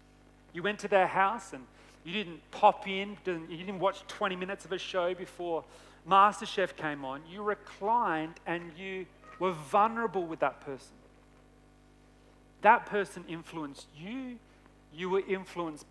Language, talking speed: English, 145 wpm